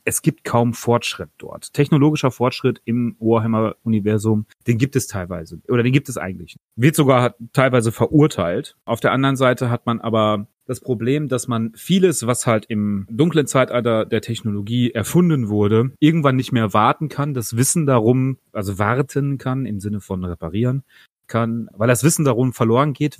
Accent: German